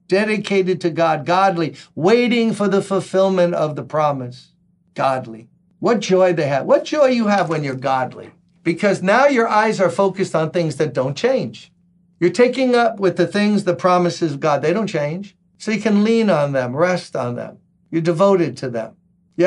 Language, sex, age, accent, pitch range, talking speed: English, male, 50-69, American, 155-195 Hz, 190 wpm